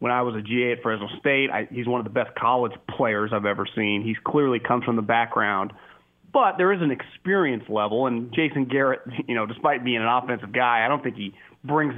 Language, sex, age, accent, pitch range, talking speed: English, male, 30-49, American, 120-160 Hz, 230 wpm